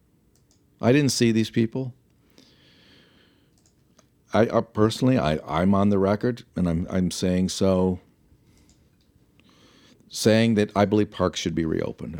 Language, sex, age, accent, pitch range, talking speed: English, male, 50-69, American, 85-110 Hz, 130 wpm